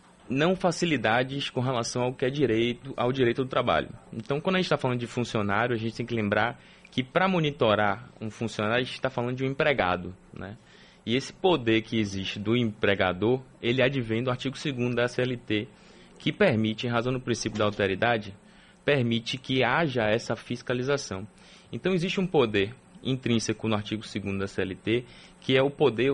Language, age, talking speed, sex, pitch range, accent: Portuguese, 20-39, 180 wpm, male, 110-150 Hz, Brazilian